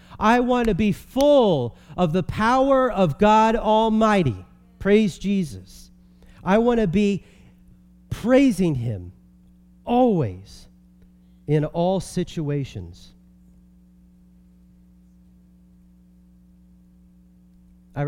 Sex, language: male, English